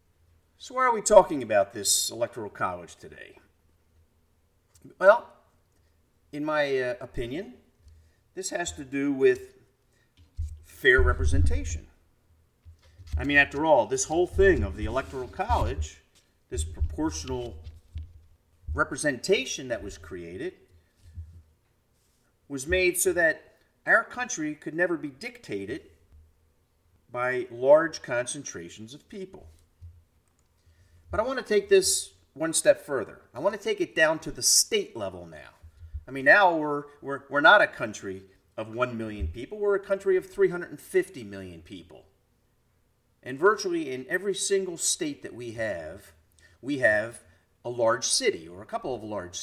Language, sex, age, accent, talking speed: English, male, 50-69, American, 135 wpm